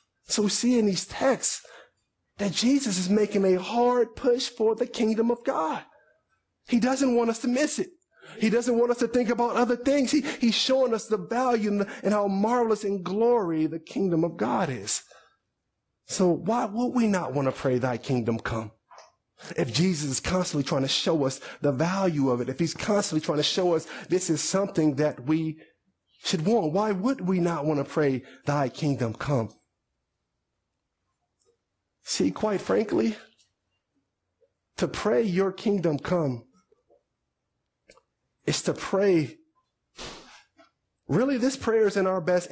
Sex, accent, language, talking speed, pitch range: male, American, English, 160 wpm, 150-225 Hz